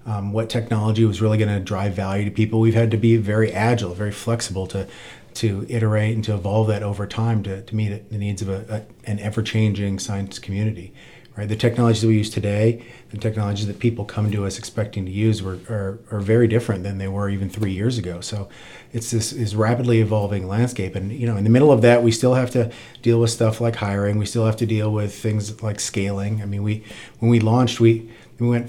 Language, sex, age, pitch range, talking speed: English, male, 40-59, 105-120 Hz, 230 wpm